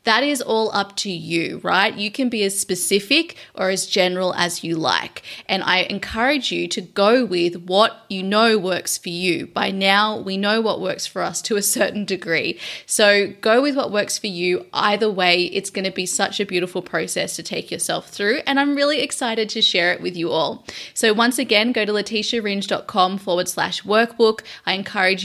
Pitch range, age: 185-220 Hz, 20-39